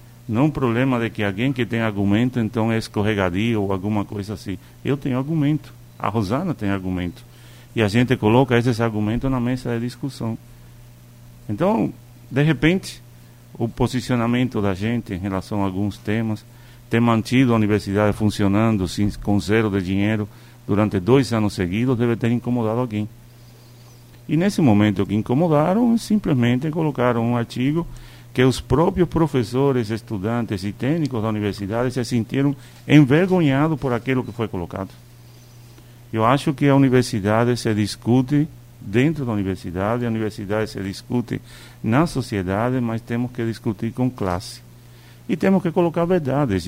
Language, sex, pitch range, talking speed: Portuguese, male, 110-130 Hz, 150 wpm